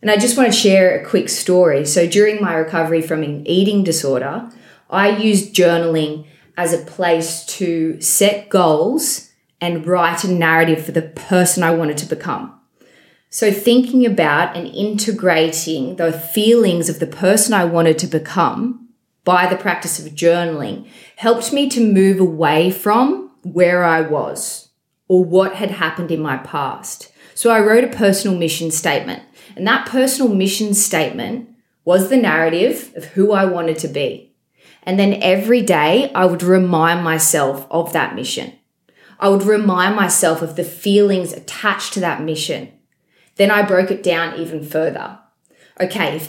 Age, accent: 20-39, Australian